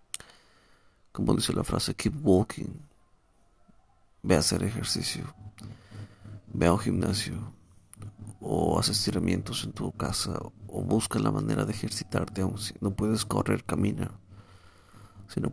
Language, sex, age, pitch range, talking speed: Spanish, male, 50-69, 90-105 Hz, 130 wpm